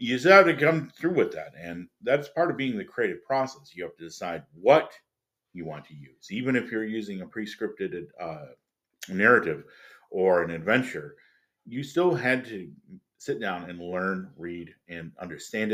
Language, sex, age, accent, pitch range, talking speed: English, male, 50-69, American, 85-130 Hz, 175 wpm